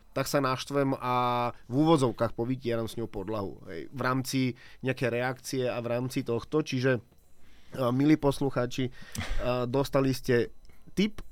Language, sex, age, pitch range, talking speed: Slovak, male, 30-49, 120-140 Hz, 135 wpm